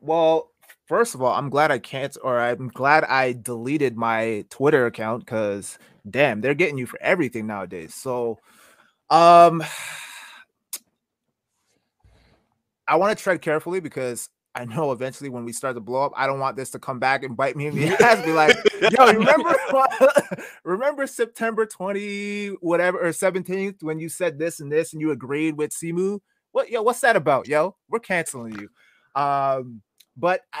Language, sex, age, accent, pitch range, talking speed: English, male, 20-39, American, 125-185 Hz, 175 wpm